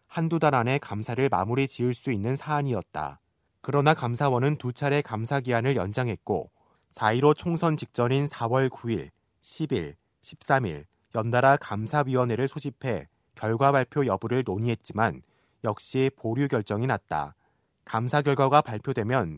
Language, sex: Korean, male